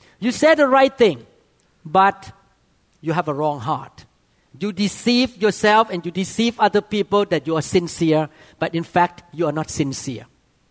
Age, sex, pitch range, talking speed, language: 40-59, male, 160-220 Hz, 170 wpm, English